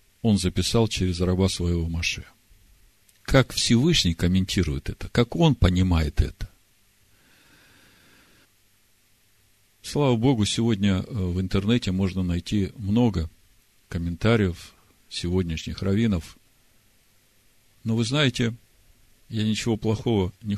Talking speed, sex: 95 wpm, male